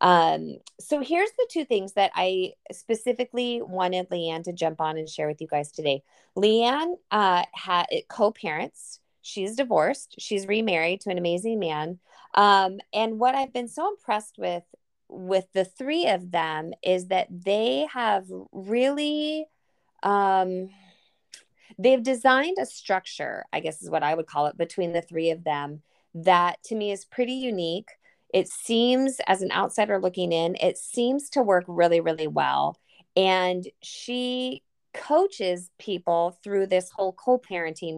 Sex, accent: female, American